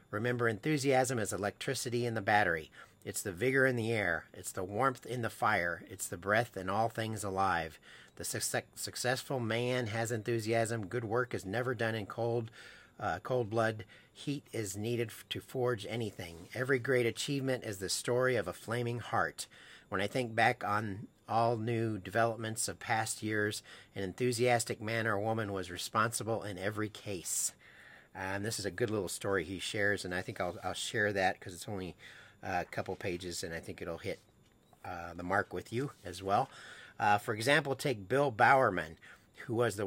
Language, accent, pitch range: English, American, 100-125 Hz